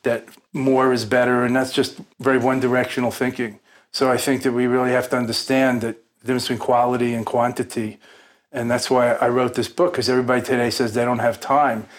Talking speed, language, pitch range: 210 wpm, English, 115-130 Hz